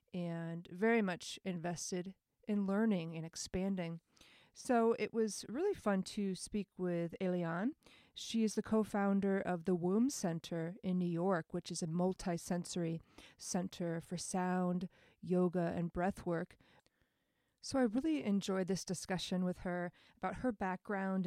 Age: 30-49